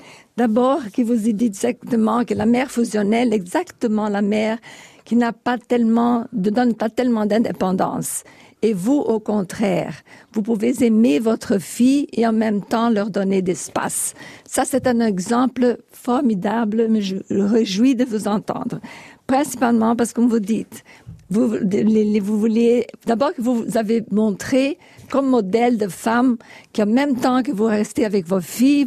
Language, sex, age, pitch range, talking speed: French, female, 50-69, 210-245 Hz, 160 wpm